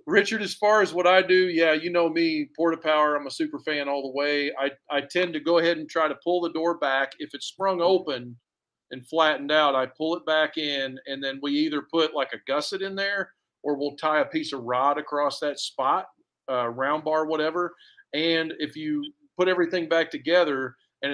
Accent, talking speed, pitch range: American, 220 wpm, 135-170 Hz